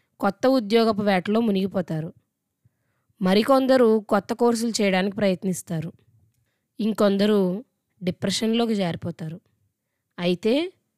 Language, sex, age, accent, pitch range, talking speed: Telugu, female, 20-39, native, 180-225 Hz, 70 wpm